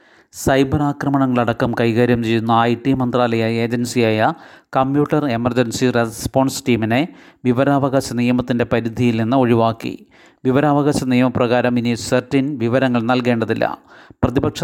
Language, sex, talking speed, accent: Malayalam, male, 95 wpm, native